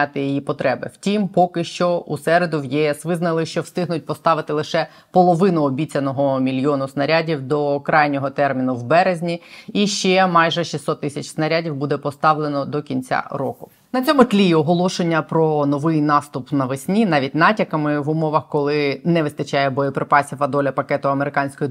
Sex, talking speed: female, 150 wpm